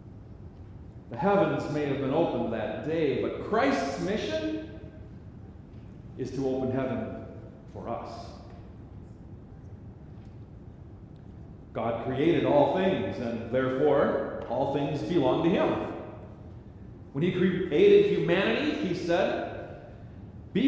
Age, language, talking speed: 40-59, English, 100 wpm